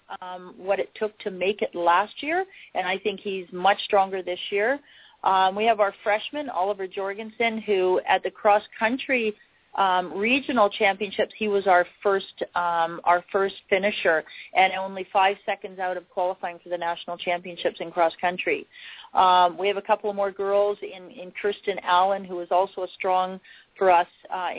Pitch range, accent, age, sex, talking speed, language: 180-210 Hz, American, 40-59, female, 180 wpm, English